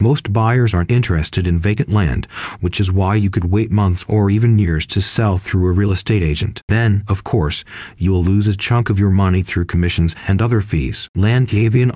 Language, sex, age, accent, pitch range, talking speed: English, male, 40-59, American, 95-115 Hz, 200 wpm